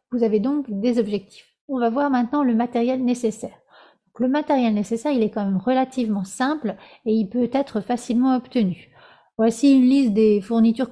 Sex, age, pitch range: female, 30-49, 220-260 Hz